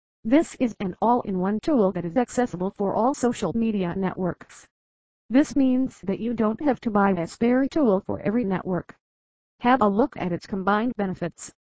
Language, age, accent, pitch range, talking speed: English, 50-69, American, 190-250 Hz, 175 wpm